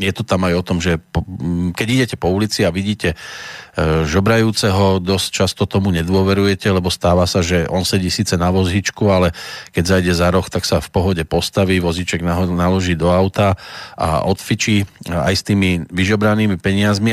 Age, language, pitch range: 40-59, Slovak, 90-110 Hz